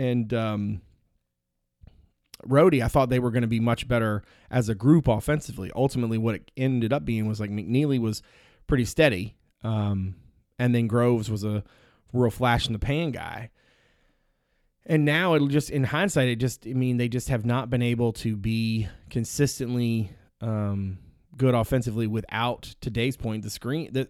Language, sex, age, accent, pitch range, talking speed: English, male, 30-49, American, 110-135 Hz, 170 wpm